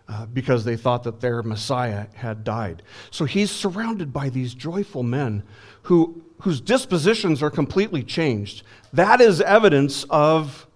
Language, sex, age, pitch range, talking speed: English, male, 50-69, 115-155 Hz, 145 wpm